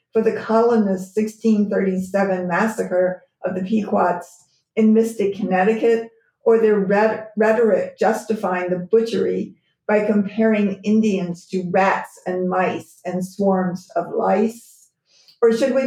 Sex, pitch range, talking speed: female, 195-225 Hz, 120 wpm